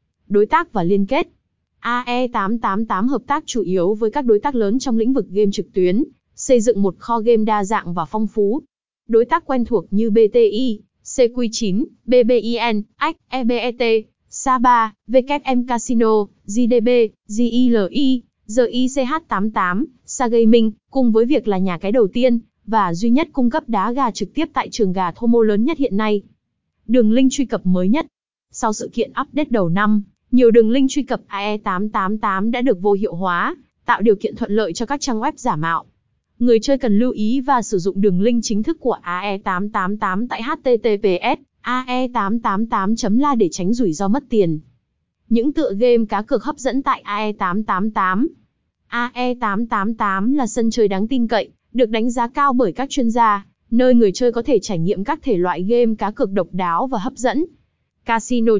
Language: Vietnamese